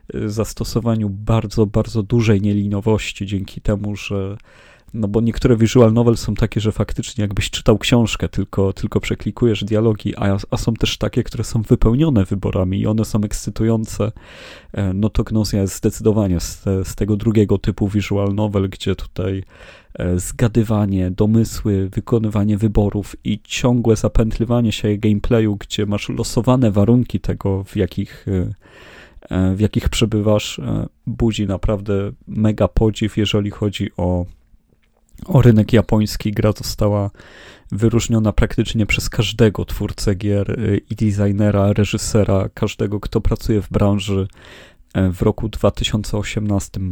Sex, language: male, Polish